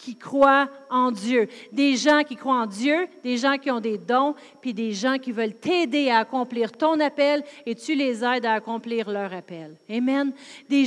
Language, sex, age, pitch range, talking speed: French, female, 40-59, 280-335 Hz, 200 wpm